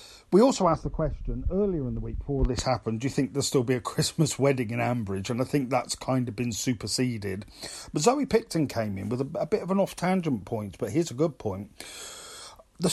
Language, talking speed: English, 230 wpm